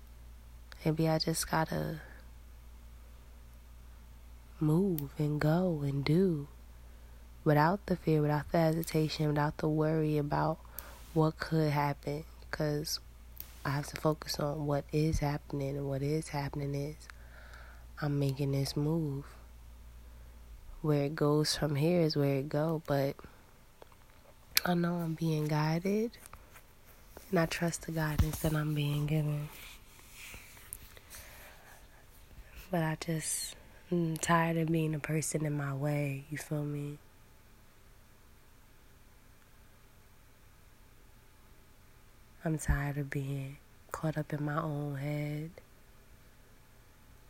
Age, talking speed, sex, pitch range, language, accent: 20-39, 115 wpm, female, 110-155 Hz, English, American